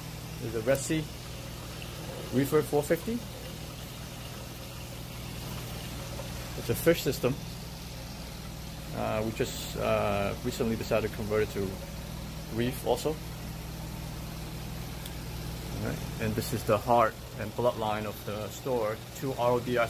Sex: male